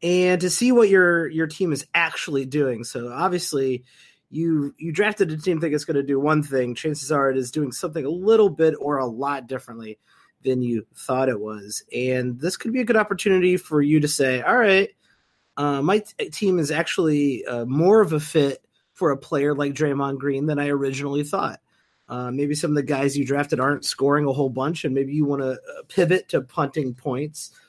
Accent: American